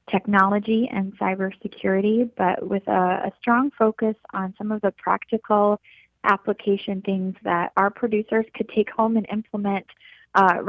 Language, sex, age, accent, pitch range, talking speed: English, female, 20-39, American, 185-220 Hz, 140 wpm